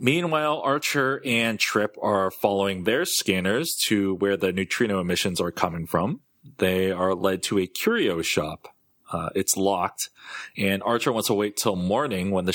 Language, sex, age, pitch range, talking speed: English, male, 30-49, 95-115 Hz, 165 wpm